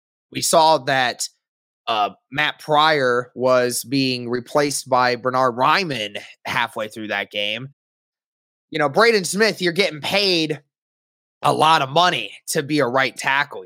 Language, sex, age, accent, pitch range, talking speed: English, male, 20-39, American, 125-150 Hz, 140 wpm